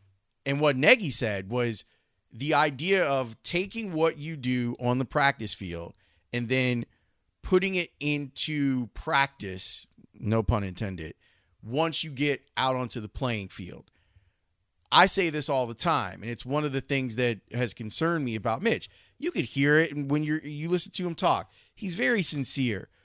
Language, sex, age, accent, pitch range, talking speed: English, male, 30-49, American, 110-155 Hz, 170 wpm